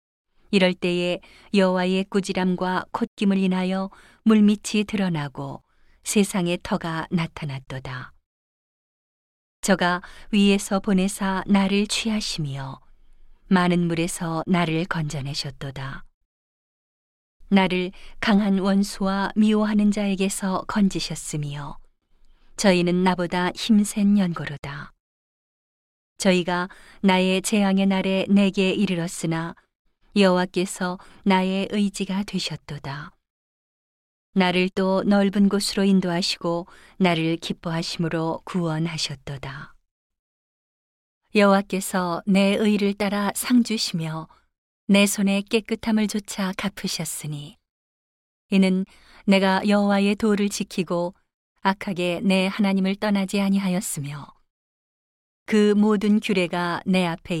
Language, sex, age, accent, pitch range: Korean, female, 40-59, native, 165-200 Hz